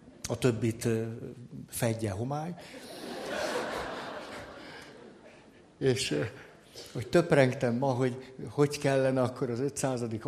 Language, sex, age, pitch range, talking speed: Hungarian, male, 60-79, 120-140 Hz, 80 wpm